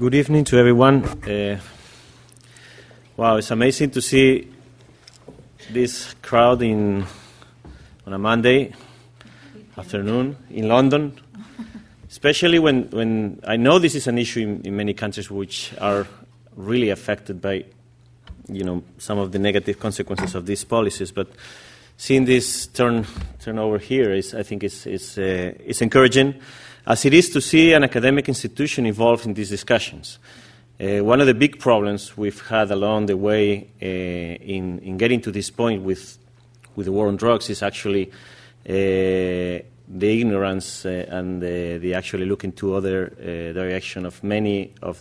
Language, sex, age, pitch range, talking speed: English, male, 30-49, 95-125 Hz, 155 wpm